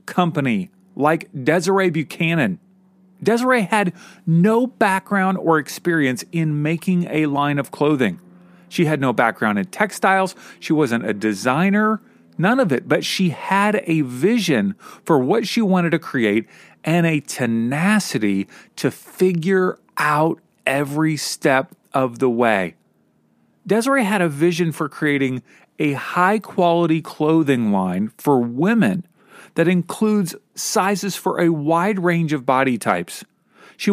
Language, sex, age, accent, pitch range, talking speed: English, male, 40-59, American, 150-200 Hz, 135 wpm